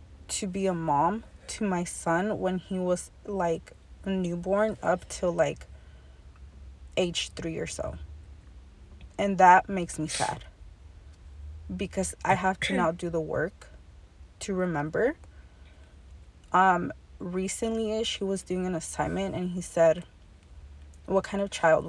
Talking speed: 135 wpm